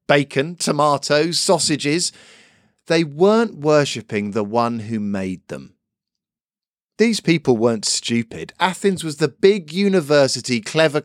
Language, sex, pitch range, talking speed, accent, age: English, male, 115-165 Hz, 115 wpm, British, 40-59